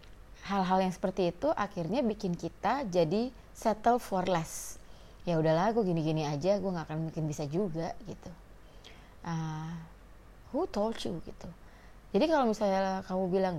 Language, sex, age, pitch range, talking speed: Indonesian, female, 30-49, 160-200 Hz, 145 wpm